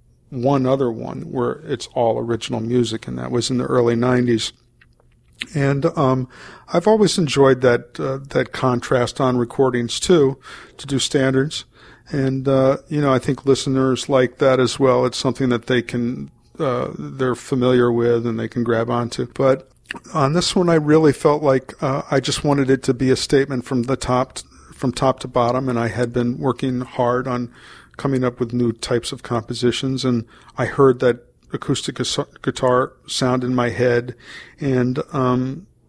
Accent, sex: American, male